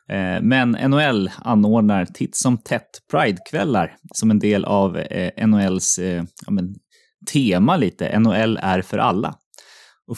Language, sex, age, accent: English, male, 20-39, Swedish